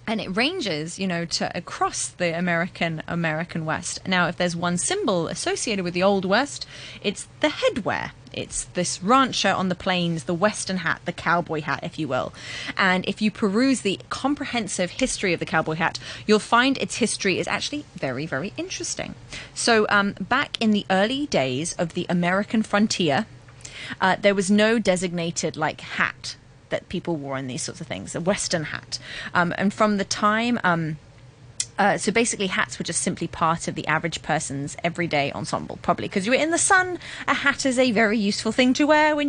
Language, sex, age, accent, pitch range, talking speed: English, female, 30-49, British, 165-220 Hz, 190 wpm